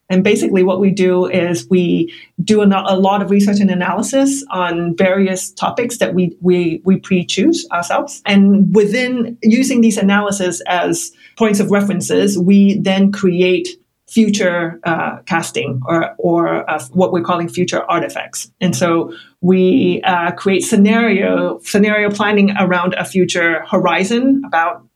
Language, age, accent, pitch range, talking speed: English, 30-49, American, 180-210 Hz, 140 wpm